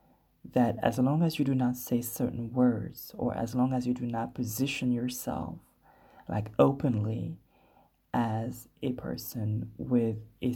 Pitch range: 115-130 Hz